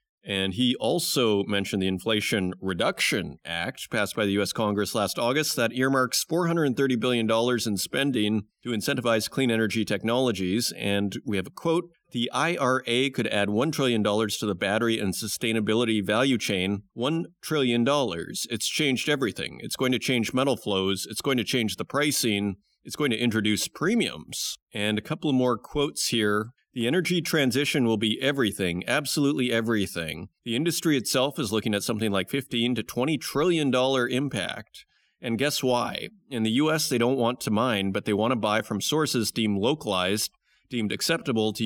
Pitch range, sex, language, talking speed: 105-135 Hz, male, English, 170 wpm